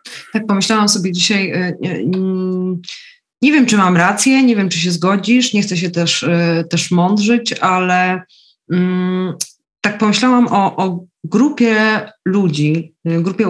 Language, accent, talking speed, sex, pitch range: Polish, native, 125 wpm, female, 165-195 Hz